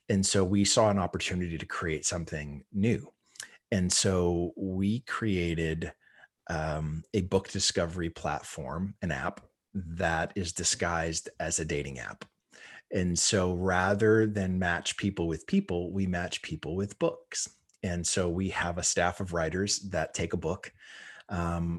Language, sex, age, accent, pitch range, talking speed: English, male, 30-49, American, 85-95 Hz, 150 wpm